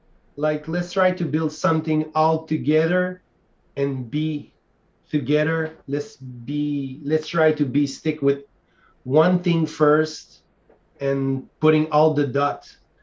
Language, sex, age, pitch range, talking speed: English, male, 30-49, 140-155 Hz, 125 wpm